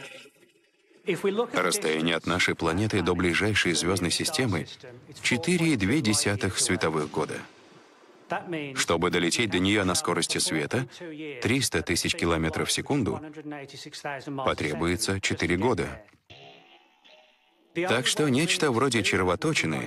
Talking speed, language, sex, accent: 95 wpm, Russian, male, native